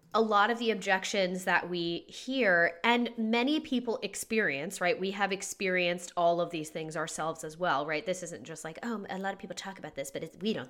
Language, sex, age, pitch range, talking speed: English, female, 20-39, 170-215 Hz, 220 wpm